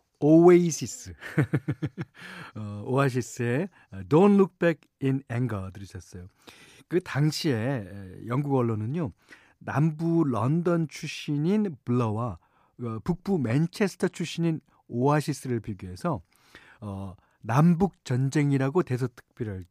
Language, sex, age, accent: Korean, male, 40-59, native